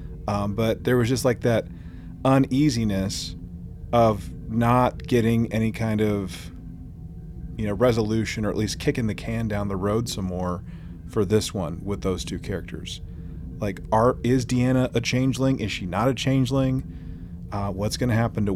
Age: 30-49